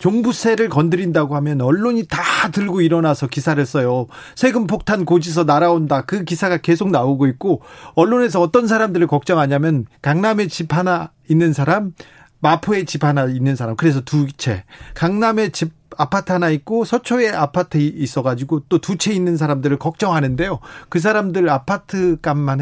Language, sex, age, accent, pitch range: Korean, male, 40-59, native, 145-195 Hz